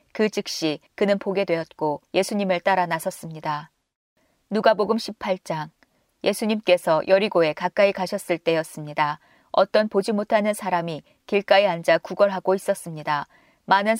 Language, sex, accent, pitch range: Korean, female, native, 170-205 Hz